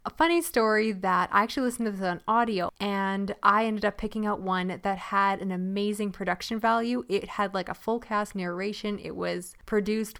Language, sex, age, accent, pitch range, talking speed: English, female, 10-29, American, 200-245 Hz, 200 wpm